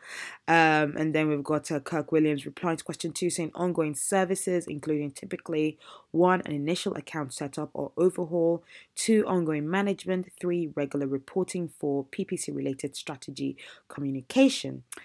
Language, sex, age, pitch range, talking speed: English, female, 20-39, 145-180 Hz, 140 wpm